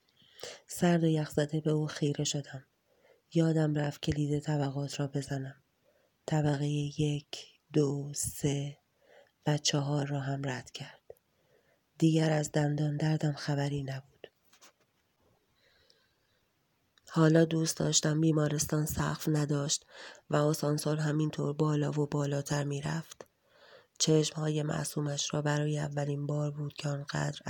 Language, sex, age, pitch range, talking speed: Persian, female, 30-49, 145-155 Hz, 115 wpm